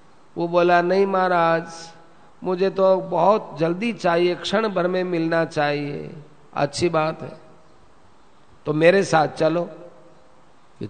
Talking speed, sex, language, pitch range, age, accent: 120 wpm, male, Hindi, 160-180 Hz, 50-69, native